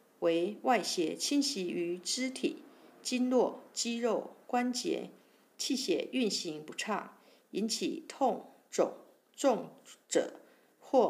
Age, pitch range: 50-69, 220-320 Hz